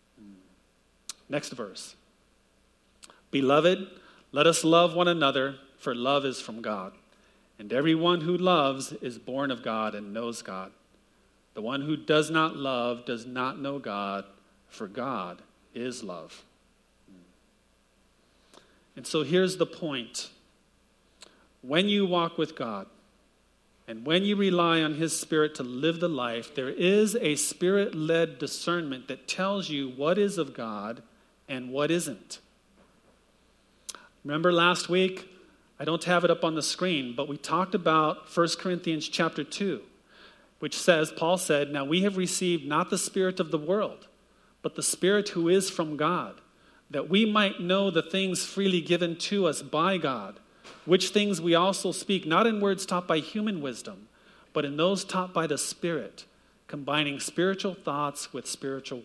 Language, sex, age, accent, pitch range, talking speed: English, male, 40-59, American, 140-185 Hz, 150 wpm